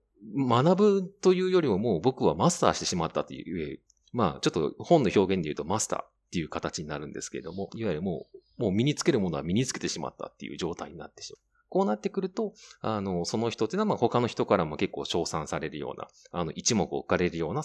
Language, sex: Japanese, male